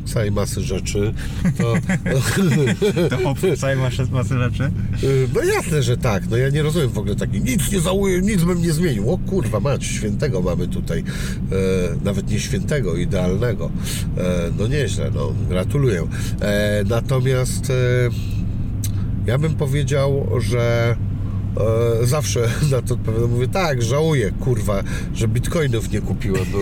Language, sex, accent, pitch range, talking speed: Polish, male, native, 110-135 Hz, 125 wpm